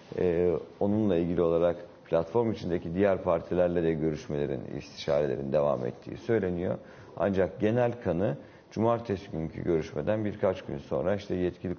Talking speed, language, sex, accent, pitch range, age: 125 wpm, Turkish, male, native, 85-105 Hz, 50-69